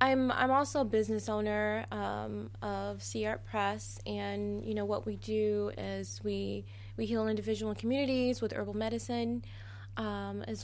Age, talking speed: 20-39, 160 wpm